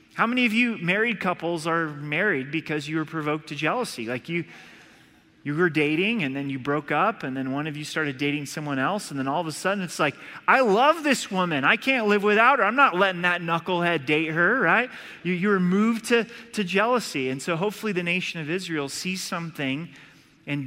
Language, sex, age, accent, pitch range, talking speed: English, male, 30-49, American, 145-185 Hz, 220 wpm